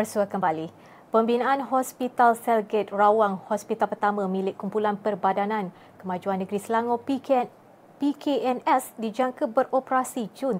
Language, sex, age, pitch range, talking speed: Malay, female, 20-39, 190-230 Hz, 110 wpm